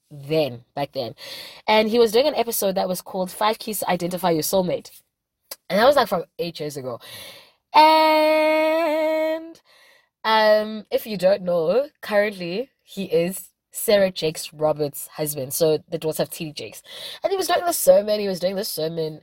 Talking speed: 175 wpm